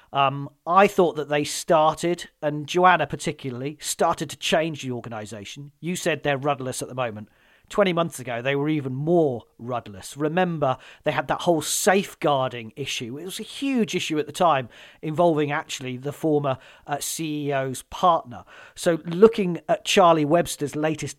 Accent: British